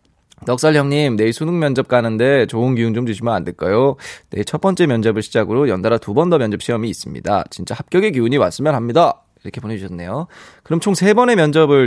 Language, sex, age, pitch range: Korean, male, 20-39, 120-185 Hz